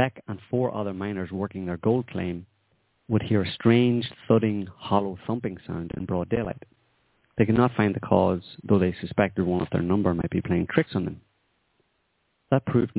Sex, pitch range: male, 95-110 Hz